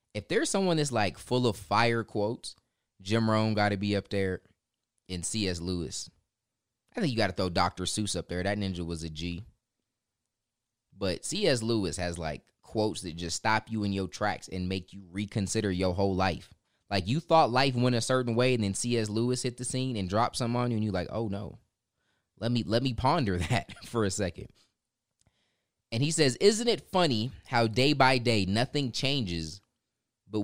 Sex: male